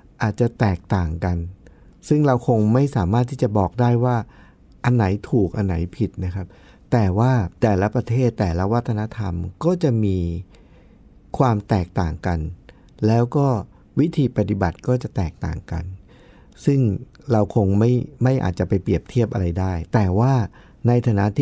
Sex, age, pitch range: male, 60-79, 95-130 Hz